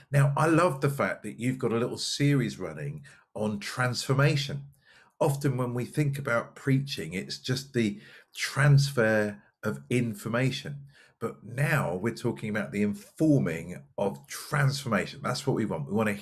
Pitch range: 105-140 Hz